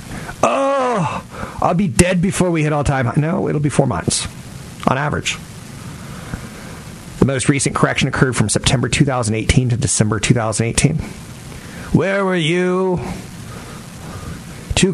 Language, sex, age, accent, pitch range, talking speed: English, male, 40-59, American, 110-150 Hz, 125 wpm